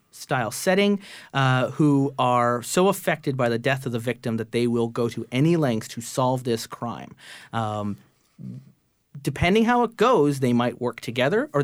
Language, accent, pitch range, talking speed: English, American, 115-150 Hz, 170 wpm